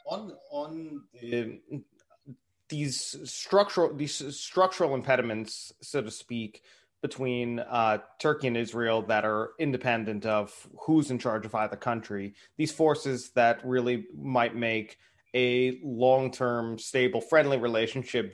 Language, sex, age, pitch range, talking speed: Turkish, male, 30-49, 110-130 Hz, 125 wpm